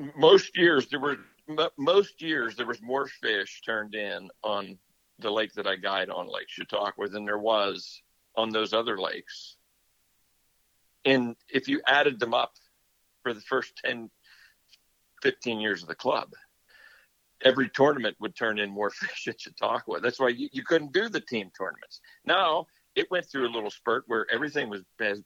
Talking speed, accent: 170 wpm, American